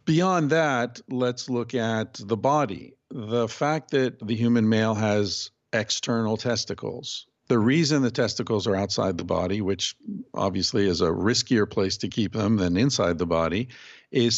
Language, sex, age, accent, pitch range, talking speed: English, male, 50-69, American, 100-125 Hz, 160 wpm